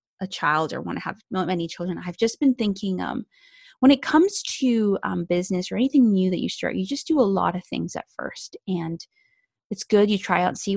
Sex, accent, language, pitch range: female, American, English, 170-215 Hz